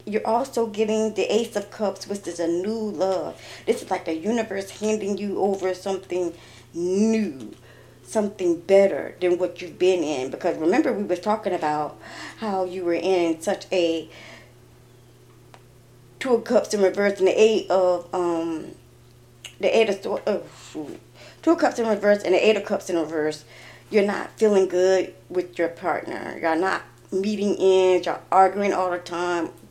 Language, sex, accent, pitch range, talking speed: English, female, American, 170-210 Hz, 170 wpm